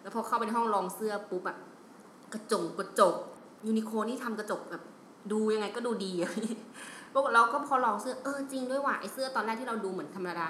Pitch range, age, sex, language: 175-245 Hz, 20-39, female, Thai